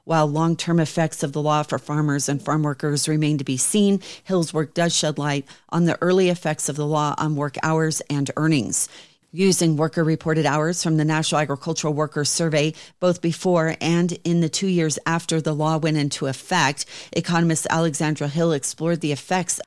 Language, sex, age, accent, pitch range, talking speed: English, female, 40-59, American, 150-170 Hz, 185 wpm